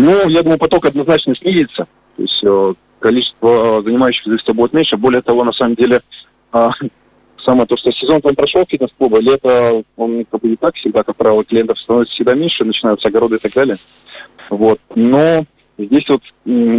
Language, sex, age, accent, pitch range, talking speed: Russian, male, 20-39, native, 110-135 Hz, 170 wpm